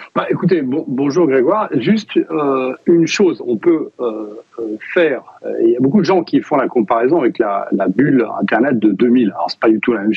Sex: male